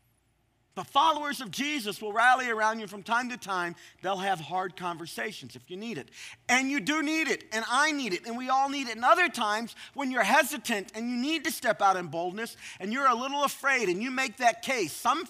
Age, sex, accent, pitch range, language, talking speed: 40-59, male, American, 165-245 Hz, English, 230 wpm